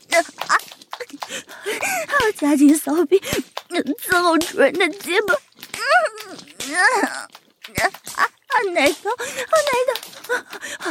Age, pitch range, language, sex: 30-49, 290-385 Hz, Chinese, female